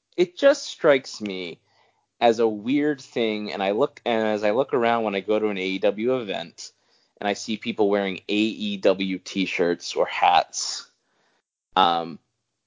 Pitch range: 100-140 Hz